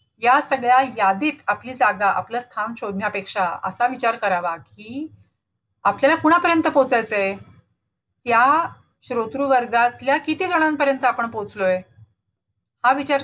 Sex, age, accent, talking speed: female, 40-59, native, 105 wpm